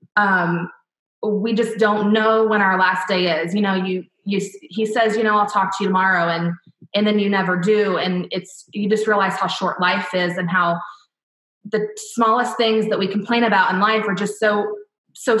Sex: female